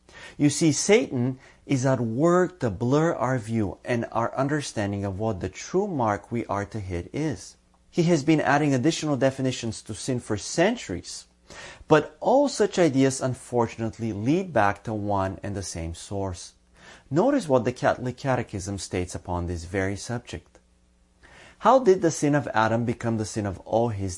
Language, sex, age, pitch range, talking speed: English, male, 30-49, 100-140 Hz, 170 wpm